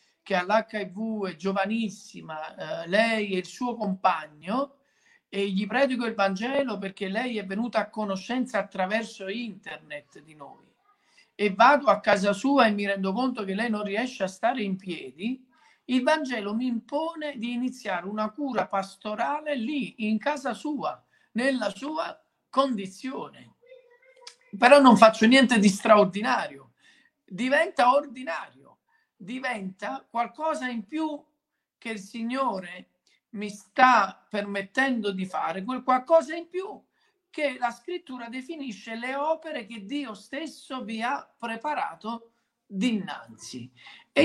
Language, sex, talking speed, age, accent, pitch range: Italian, male, 130 wpm, 50-69, native, 205-275 Hz